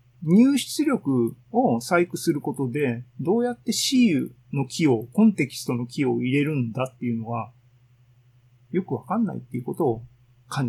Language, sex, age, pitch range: Japanese, male, 40-59, 125-180 Hz